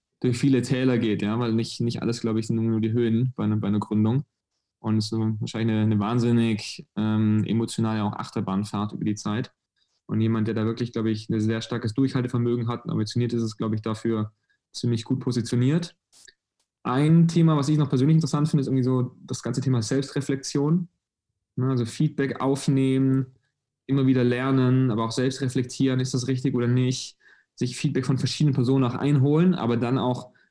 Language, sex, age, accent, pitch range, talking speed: German, male, 20-39, German, 110-130 Hz, 190 wpm